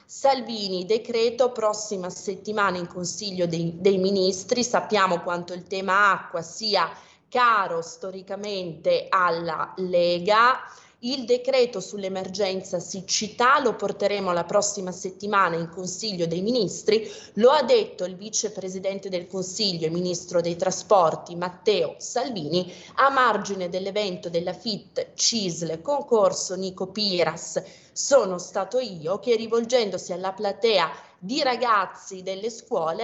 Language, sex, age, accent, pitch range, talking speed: Italian, female, 20-39, native, 180-220 Hz, 120 wpm